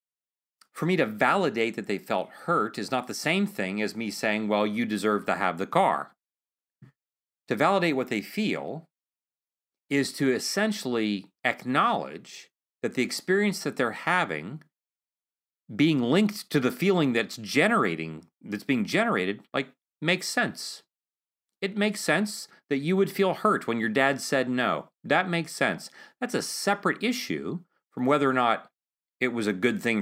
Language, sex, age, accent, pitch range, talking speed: English, male, 40-59, American, 115-170 Hz, 160 wpm